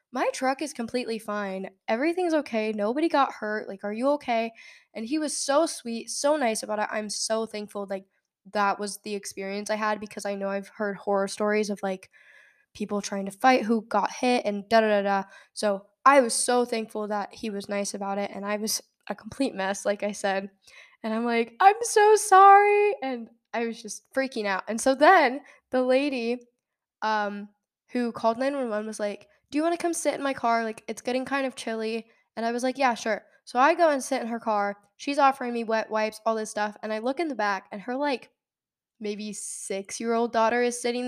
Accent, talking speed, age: American, 220 wpm, 10-29